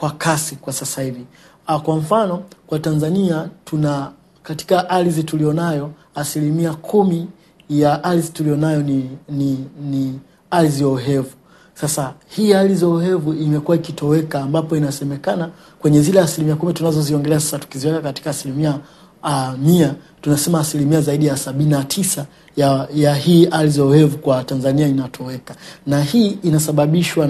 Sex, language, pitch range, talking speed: male, Swahili, 140-170 Hz, 120 wpm